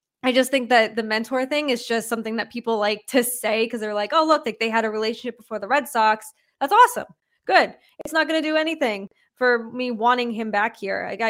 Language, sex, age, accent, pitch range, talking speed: English, female, 20-39, American, 210-250 Hz, 240 wpm